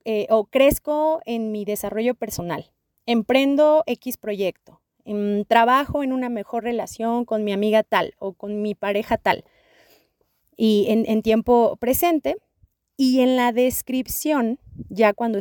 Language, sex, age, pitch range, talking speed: Spanish, female, 30-49, 205-260 Hz, 140 wpm